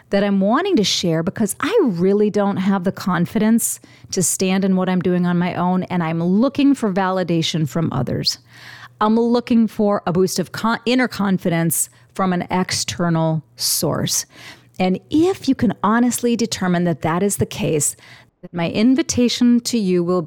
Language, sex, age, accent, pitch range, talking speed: English, female, 40-59, American, 160-220 Hz, 170 wpm